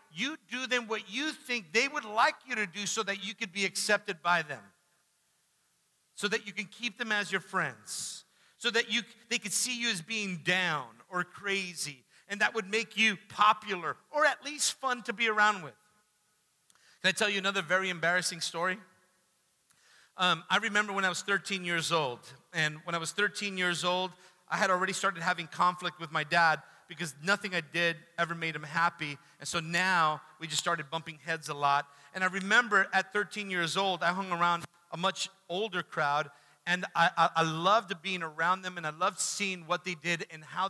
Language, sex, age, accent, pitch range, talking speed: English, male, 50-69, American, 170-205 Hz, 200 wpm